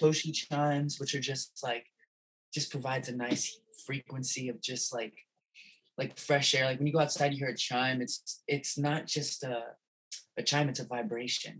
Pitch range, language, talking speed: 120-145 Hz, English, 185 wpm